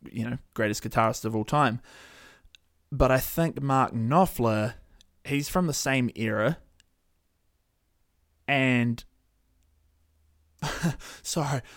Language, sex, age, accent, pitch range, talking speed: English, male, 20-39, Australian, 110-145 Hz, 95 wpm